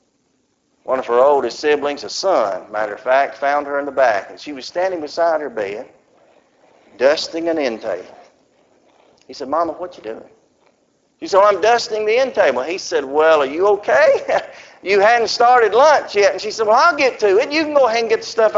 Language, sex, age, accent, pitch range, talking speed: English, male, 50-69, American, 180-305 Hz, 215 wpm